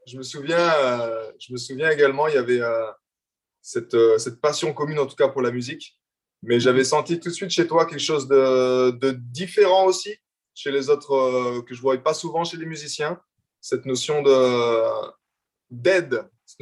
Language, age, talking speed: French, 20-39, 180 wpm